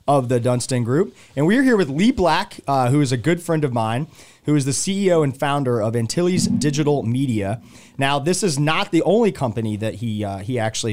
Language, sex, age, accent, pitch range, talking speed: English, male, 30-49, American, 120-150 Hz, 225 wpm